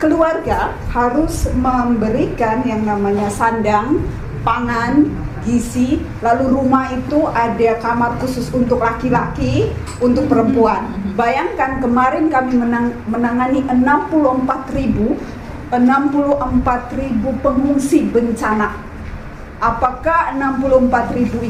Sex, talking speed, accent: female, 80 wpm, native